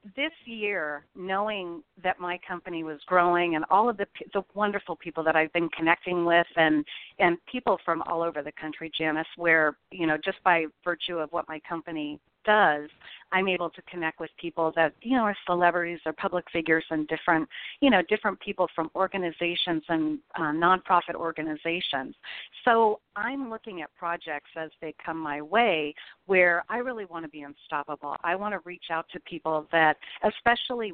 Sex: female